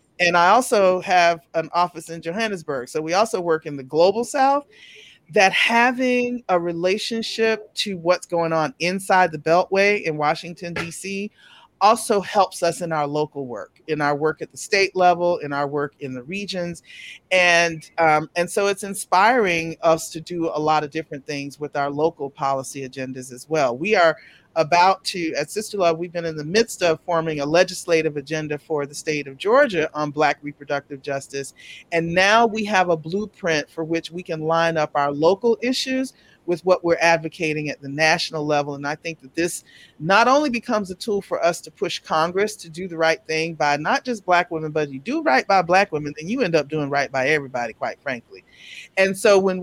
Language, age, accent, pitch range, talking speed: English, 40-59, American, 150-195 Hz, 200 wpm